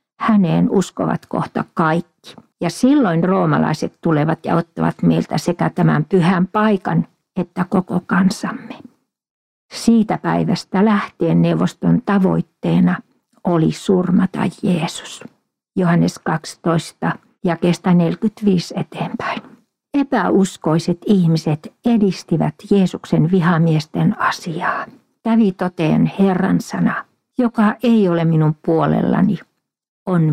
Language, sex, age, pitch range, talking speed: Finnish, female, 50-69, 170-215 Hz, 95 wpm